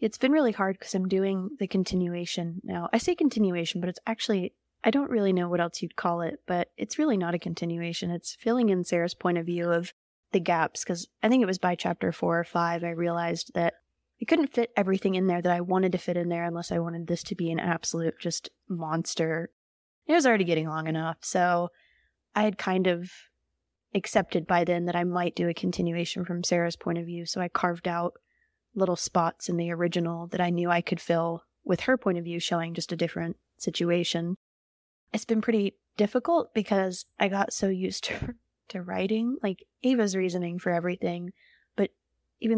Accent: American